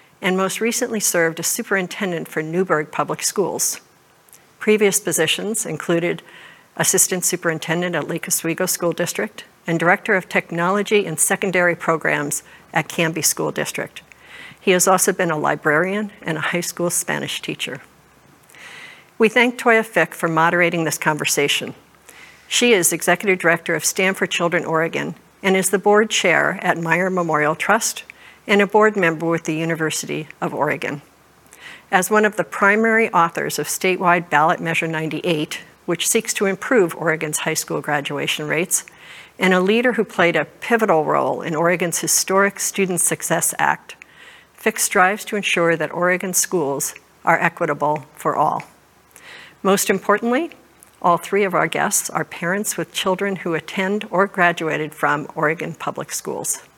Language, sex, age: English, female, 60-79